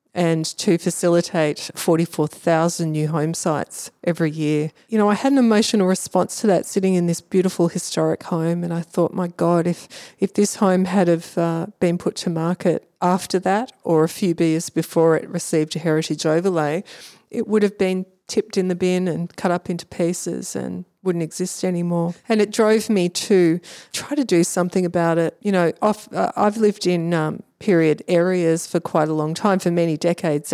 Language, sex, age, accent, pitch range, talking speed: English, female, 40-59, Australian, 170-205 Hz, 190 wpm